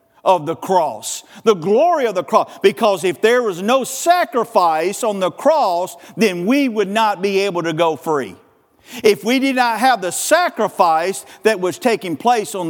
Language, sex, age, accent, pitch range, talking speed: English, male, 50-69, American, 205-290 Hz, 180 wpm